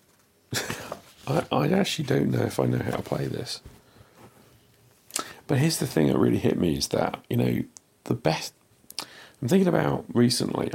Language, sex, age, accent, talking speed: English, male, 40-59, British, 165 wpm